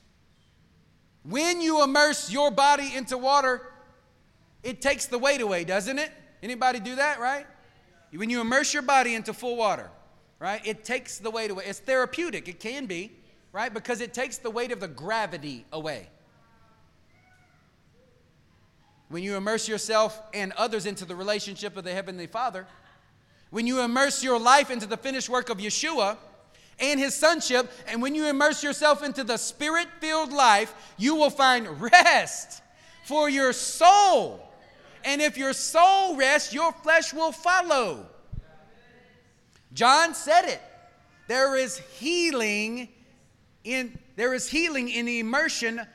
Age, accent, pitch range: 30-49, American, 215-280 Hz